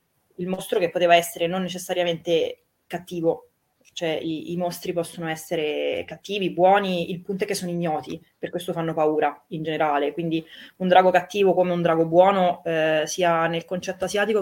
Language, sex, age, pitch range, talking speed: Italian, female, 20-39, 175-200 Hz, 170 wpm